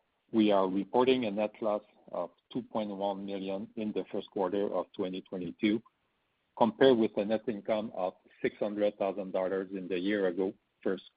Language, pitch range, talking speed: English, 95-105 Hz, 140 wpm